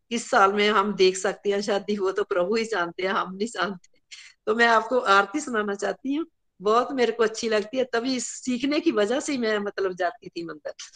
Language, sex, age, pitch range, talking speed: Hindi, female, 50-69, 220-275 Hz, 220 wpm